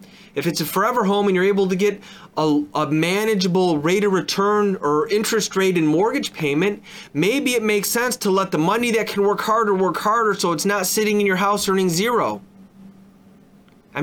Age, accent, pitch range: 30-49, American, 170-200 Hz